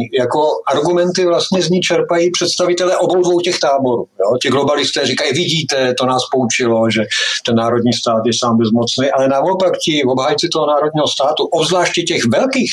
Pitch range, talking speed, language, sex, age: 115-160 Hz, 165 wpm, Czech, male, 50-69